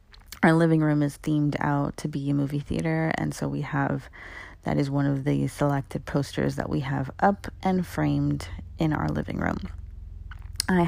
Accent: American